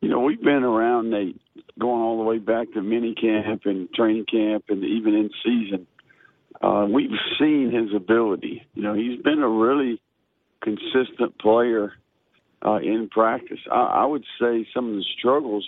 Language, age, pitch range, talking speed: English, 50-69, 105-120 Hz, 170 wpm